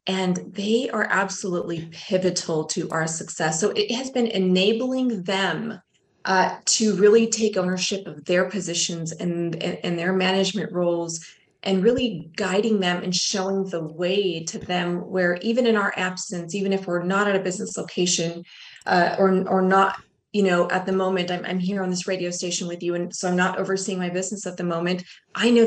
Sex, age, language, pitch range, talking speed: female, 20-39, English, 175-200 Hz, 190 wpm